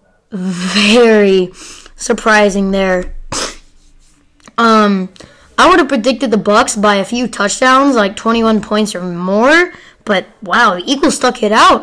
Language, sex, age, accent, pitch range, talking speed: English, female, 10-29, American, 205-250 Hz, 130 wpm